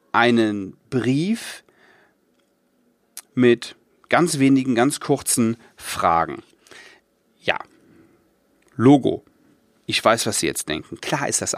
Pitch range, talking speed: 115-160 Hz, 100 wpm